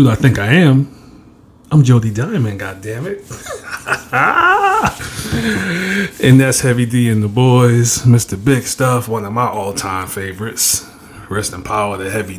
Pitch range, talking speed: 105-130 Hz, 150 wpm